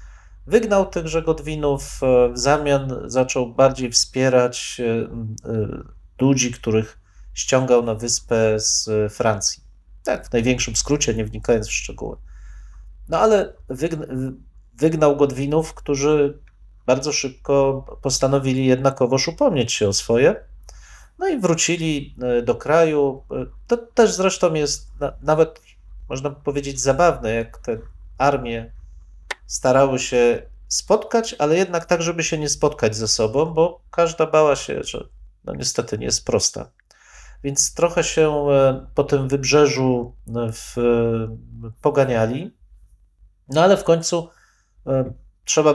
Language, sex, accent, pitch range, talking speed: Polish, male, native, 115-150 Hz, 110 wpm